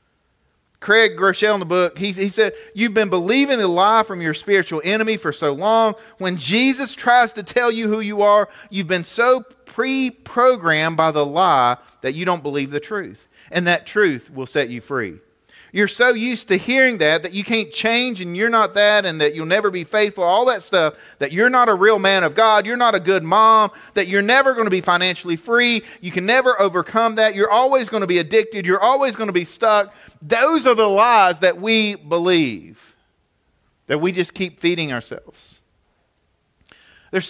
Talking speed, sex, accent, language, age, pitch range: 200 wpm, male, American, English, 40-59, 180-230 Hz